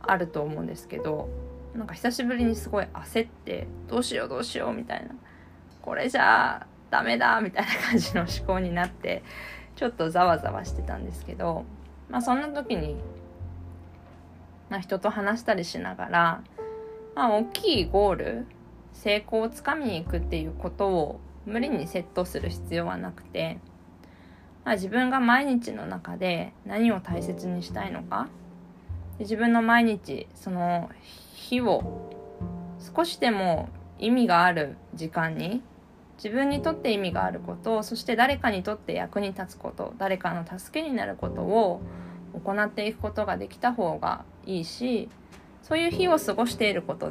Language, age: Japanese, 20-39